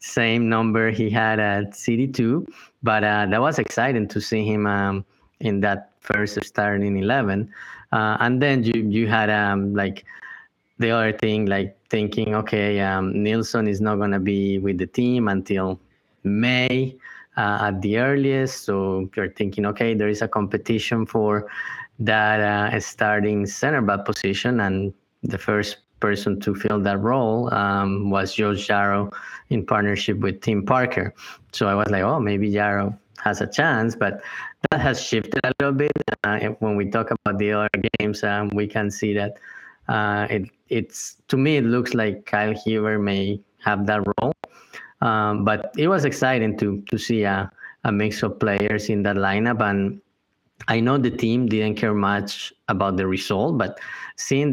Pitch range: 100-115 Hz